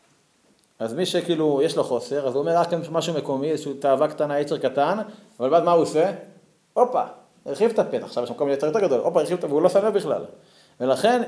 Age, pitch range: 30-49, 130-175 Hz